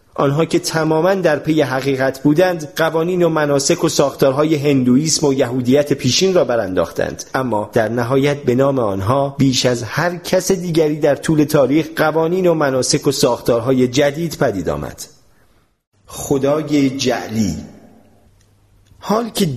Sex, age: male, 40-59